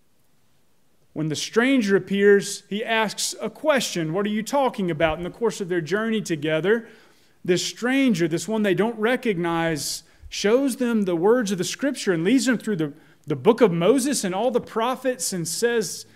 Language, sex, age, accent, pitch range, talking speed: English, male, 30-49, American, 160-225 Hz, 180 wpm